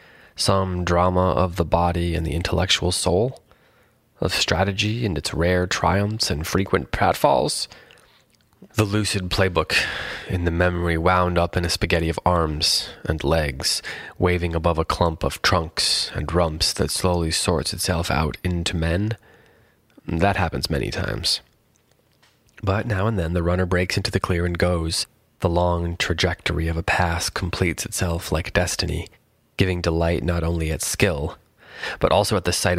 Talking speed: 155 wpm